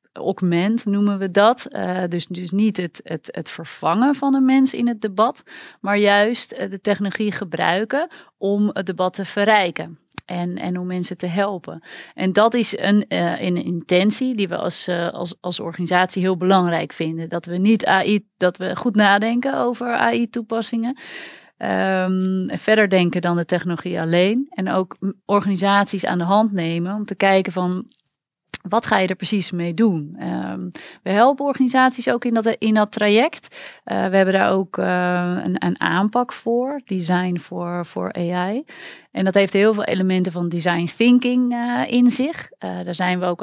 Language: Dutch